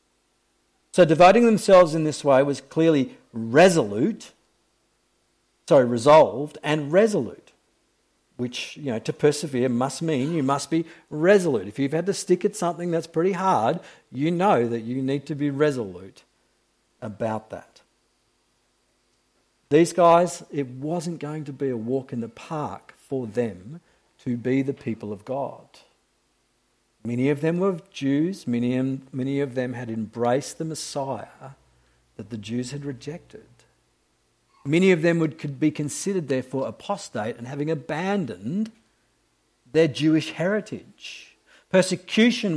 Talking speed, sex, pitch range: 135 wpm, male, 125-180 Hz